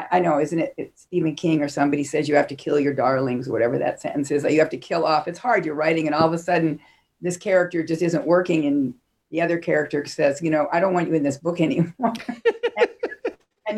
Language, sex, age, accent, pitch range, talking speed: English, female, 50-69, American, 145-205 Hz, 245 wpm